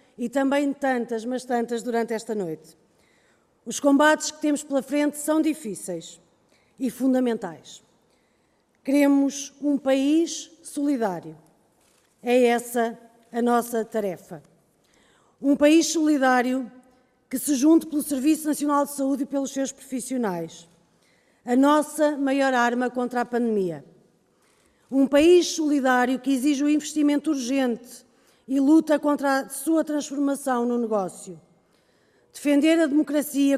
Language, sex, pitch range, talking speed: Portuguese, female, 235-285 Hz, 120 wpm